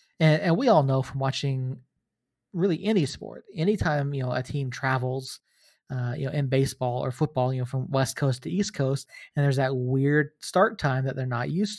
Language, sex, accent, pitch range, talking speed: English, male, American, 130-155 Hz, 210 wpm